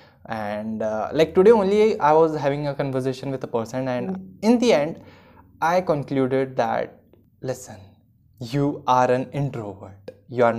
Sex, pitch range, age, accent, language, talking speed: male, 130-195 Hz, 20-39, native, Hindi, 155 wpm